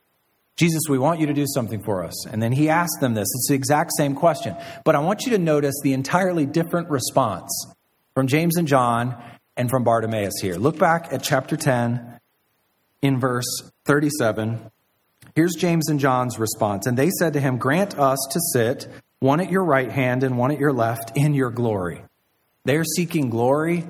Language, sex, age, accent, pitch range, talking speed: English, male, 40-59, American, 120-150 Hz, 190 wpm